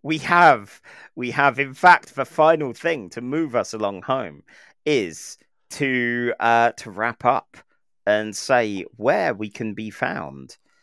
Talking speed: 150 wpm